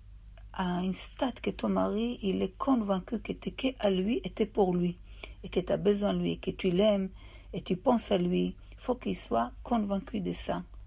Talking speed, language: 225 wpm, French